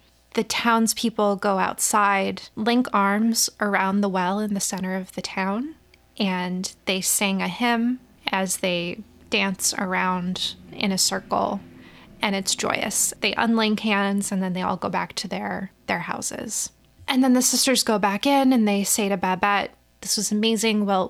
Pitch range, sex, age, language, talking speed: 195-240 Hz, female, 20-39, English, 170 wpm